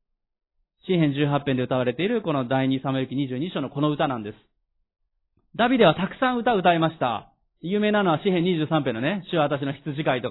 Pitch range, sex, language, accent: 125-175 Hz, male, Japanese, native